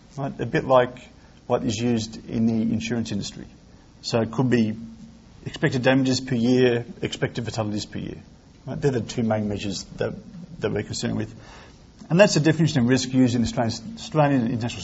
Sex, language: male, English